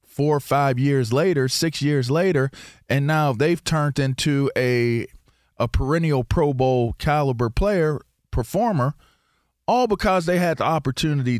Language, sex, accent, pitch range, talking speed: English, male, American, 110-140 Hz, 140 wpm